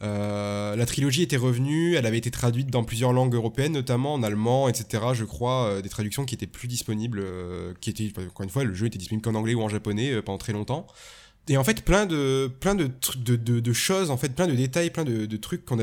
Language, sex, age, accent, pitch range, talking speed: French, male, 20-39, French, 110-140 Hz, 260 wpm